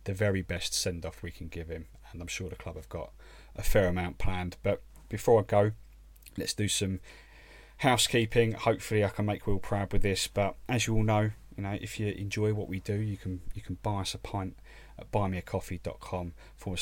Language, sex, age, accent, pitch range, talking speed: English, male, 30-49, British, 85-105 Hz, 205 wpm